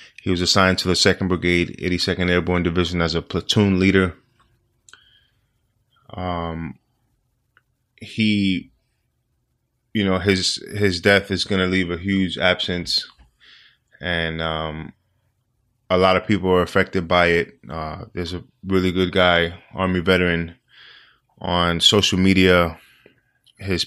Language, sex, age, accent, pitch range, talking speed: English, male, 20-39, American, 85-95 Hz, 125 wpm